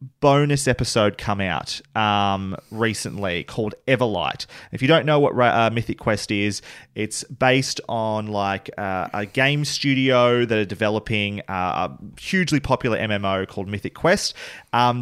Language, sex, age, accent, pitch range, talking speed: English, male, 30-49, Australian, 100-135 Hz, 145 wpm